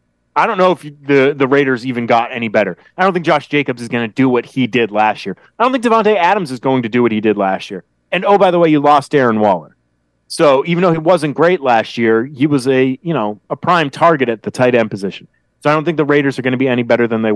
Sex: male